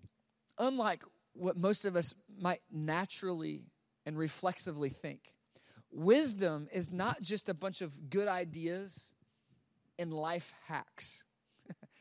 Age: 30-49